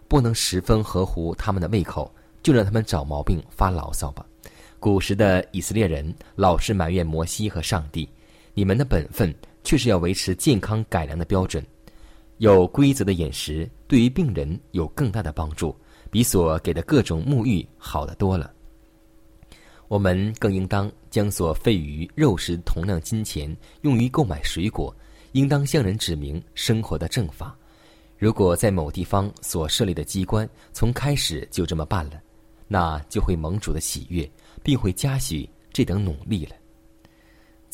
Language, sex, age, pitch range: Chinese, male, 20-39, 80-110 Hz